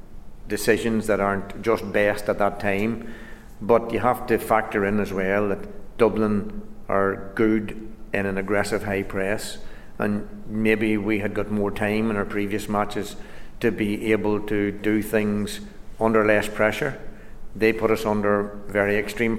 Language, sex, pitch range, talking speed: English, male, 100-110 Hz, 160 wpm